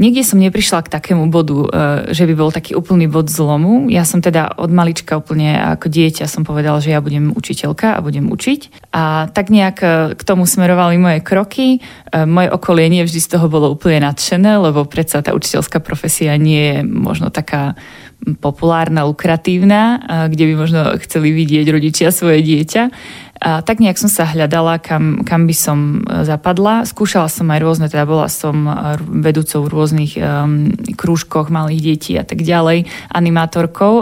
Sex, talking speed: female, 170 wpm